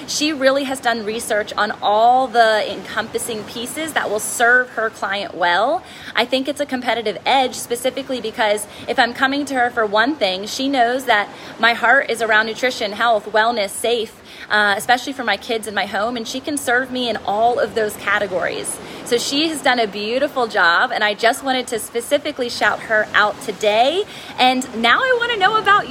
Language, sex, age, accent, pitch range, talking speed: English, female, 20-39, American, 220-270 Hz, 195 wpm